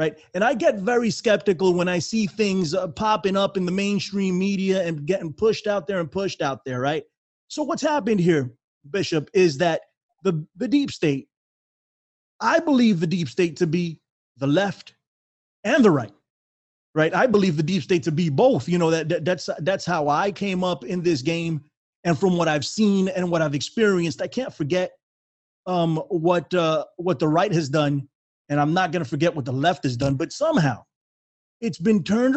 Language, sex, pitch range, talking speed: English, male, 155-205 Hz, 200 wpm